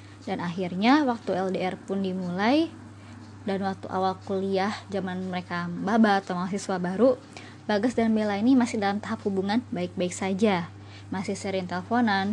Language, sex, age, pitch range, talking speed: Indonesian, male, 20-39, 180-220 Hz, 140 wpm